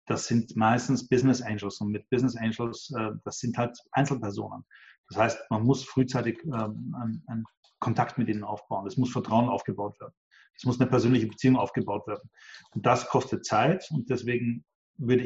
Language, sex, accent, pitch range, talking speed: German, male, German, 110-130 Hz, 165 wpm